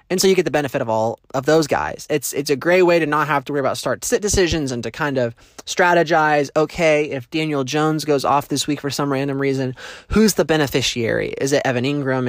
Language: English